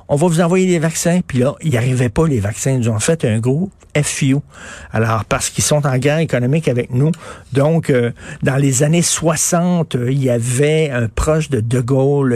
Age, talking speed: 60-79, 215 wpm